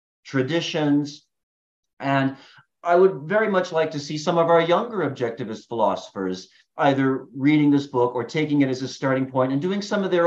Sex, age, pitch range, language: male, 50-69, 120-155 Hz, English